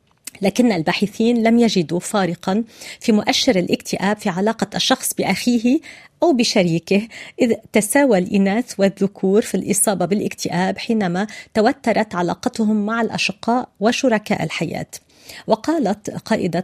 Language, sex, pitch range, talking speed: Arabic, female, 185-225 Hz, 110 wpm